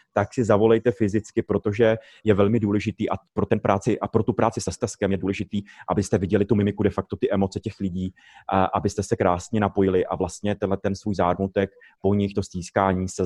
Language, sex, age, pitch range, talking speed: Czech, male, 30-49, 105-125 Hz, 190 wpm